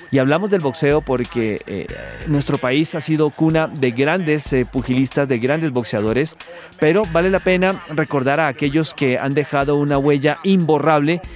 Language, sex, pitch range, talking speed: Spanish, male, 130-160 Hz, 165 wpm